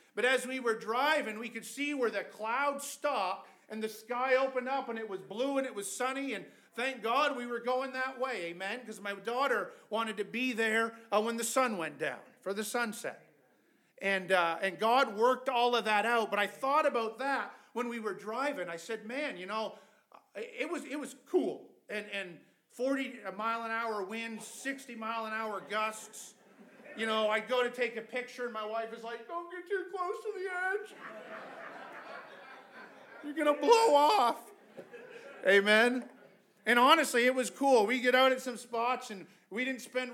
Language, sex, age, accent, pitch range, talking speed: English, male, 40-59, American, 220-265 Hz, 195 wpm